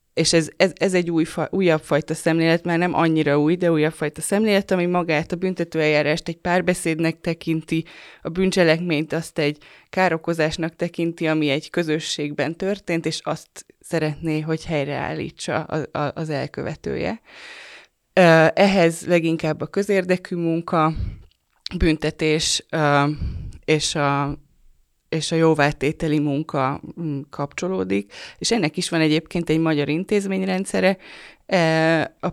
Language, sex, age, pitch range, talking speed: Hungarian, female, 20-39, 155-175 Hz, 115 wpm